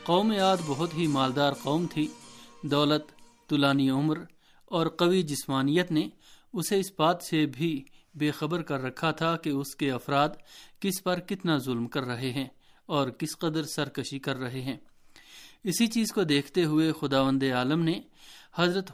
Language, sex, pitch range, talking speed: Urdu, male, 140-175 Hz, 160 wpm